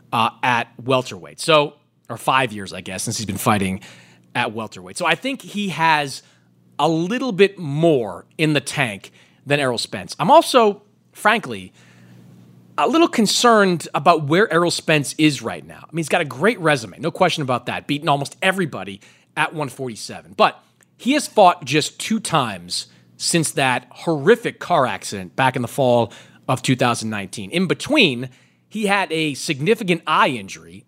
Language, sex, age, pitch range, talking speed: English, male, 30-49, 120-170 Hz, 165 wpm